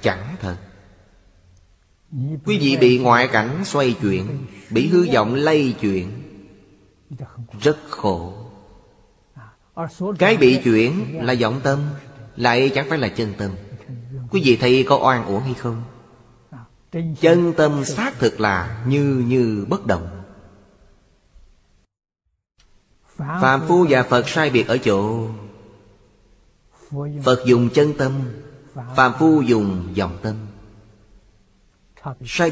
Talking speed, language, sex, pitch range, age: 115 wpm, Vietnamese, male, 100-135 Hz, 30-49